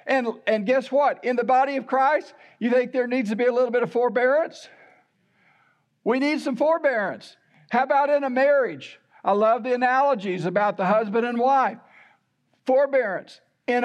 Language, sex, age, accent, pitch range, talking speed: English, male, 60-79, American, 215-265 Hz, 175 wpm